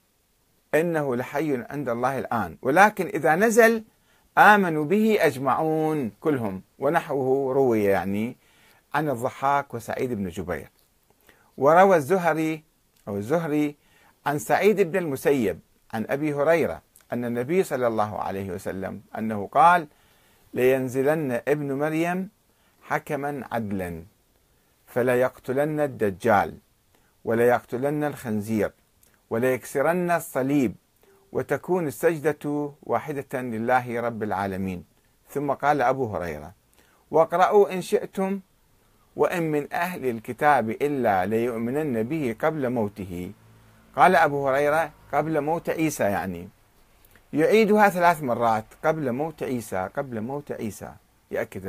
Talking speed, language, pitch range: 105 wpm, Arabic, 115-155 Hz